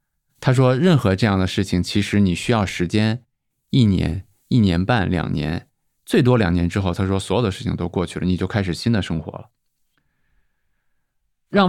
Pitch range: 95-125 Hz